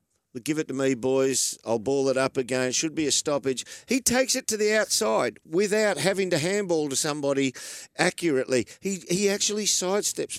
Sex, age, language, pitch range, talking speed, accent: male, 50-69, English, 110-160 Hz, 180 wpm, Australian